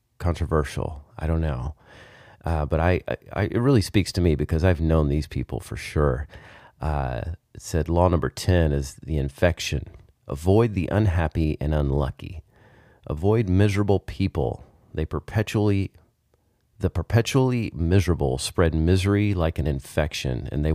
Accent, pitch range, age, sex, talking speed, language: American, 75-100 Hz, 30-49, male, 145 wpm, English